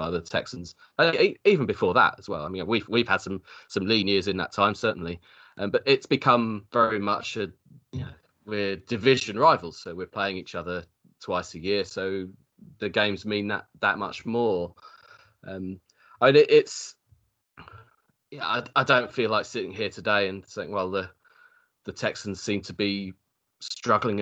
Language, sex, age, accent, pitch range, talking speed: English, male, 20-39, British, 100-135 Hz, 185 wpm